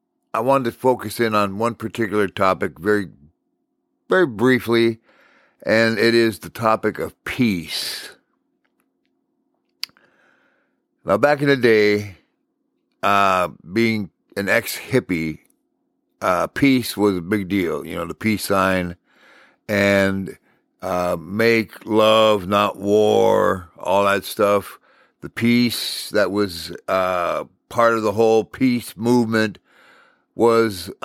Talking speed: 115 wpm